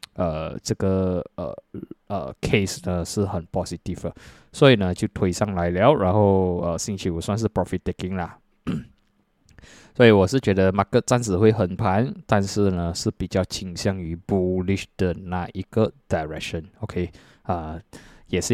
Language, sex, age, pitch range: Chinese, male, 20-39, 90-110 Hz